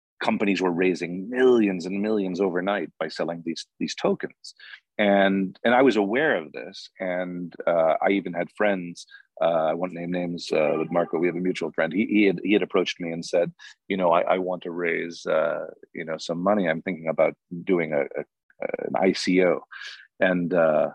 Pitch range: 90-105 Hz